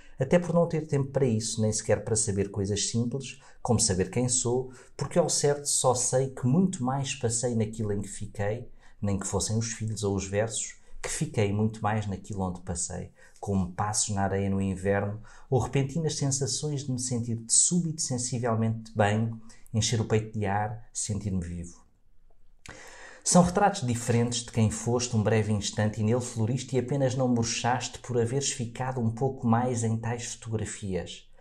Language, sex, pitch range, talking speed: Portuguese, male, 105-125 Hz, 180 wpm